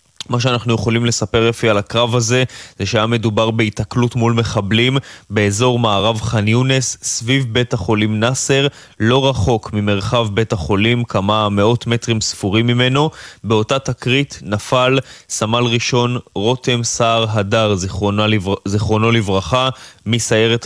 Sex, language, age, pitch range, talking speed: male, Hebrew, 20-39, 105-120 Hz, 130 wpm